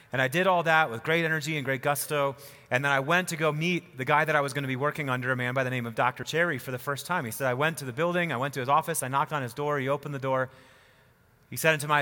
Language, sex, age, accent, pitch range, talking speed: English, male, 30-49, American, 130-165 Hz, 330 wpm